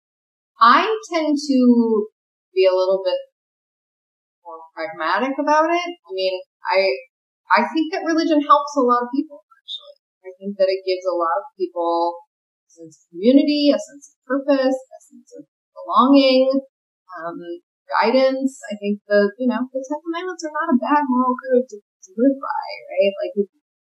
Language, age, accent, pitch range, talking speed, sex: English, 20-39, American, 185-290 Hz, 170 wpm, female